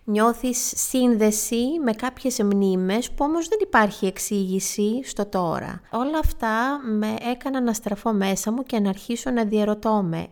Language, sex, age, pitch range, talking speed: Greek, female, 30-49, 180-235 Hz, 150 wpm